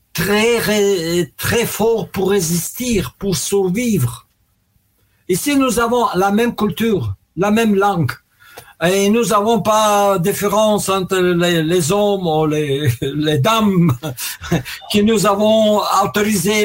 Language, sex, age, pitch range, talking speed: French, male, 60-79, 175-225 Hz, 125 wpm